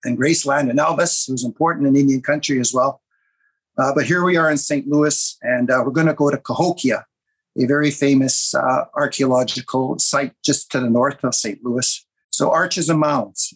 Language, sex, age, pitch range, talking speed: English, male, 50-69, 130-155 Hz, 195 wpm